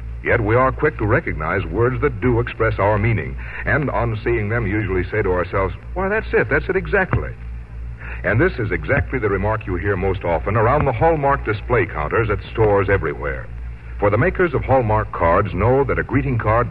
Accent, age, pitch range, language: American, 60-79, 80-130 Hz, English